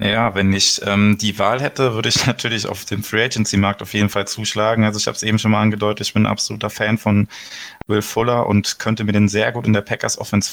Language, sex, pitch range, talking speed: German, male, 105-115 Hz, 240 wpm